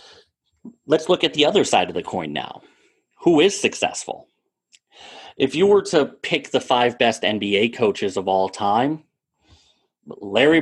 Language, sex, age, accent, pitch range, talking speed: English, male, 30-49, American, 105-145 Hz, 155 wpm